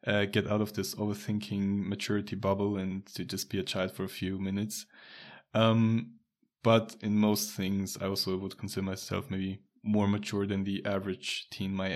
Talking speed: 180 wpm